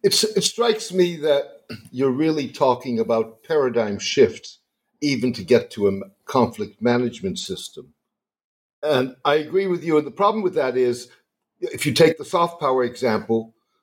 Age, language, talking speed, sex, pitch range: 60-79, English, 160 wpm, male, 120-190 Hz